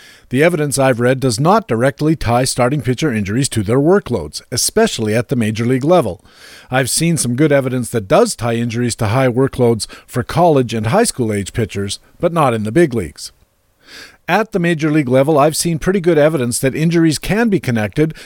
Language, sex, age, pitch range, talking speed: English, male, 50-69, 125-165 Hz, 195 wpm